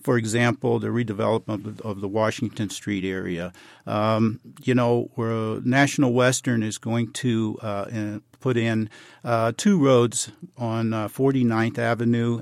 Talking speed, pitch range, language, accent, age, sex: 135 wpm, 110-125 Hz, English, American, 50-69, male